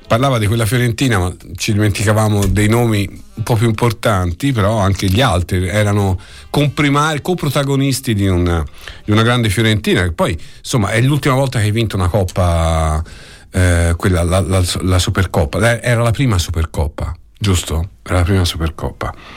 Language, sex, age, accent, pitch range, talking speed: Italian, male, 50-69, native, 95-120 Hz, 160 wpm